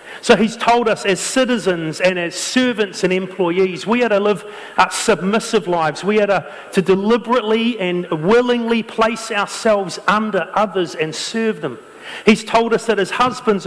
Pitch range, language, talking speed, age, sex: 185-225 Hz, English, 165 wpm, 40-59, male